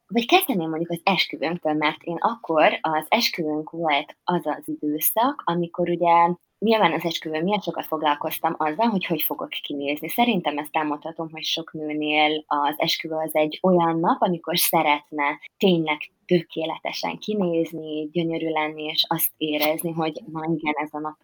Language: Hungarian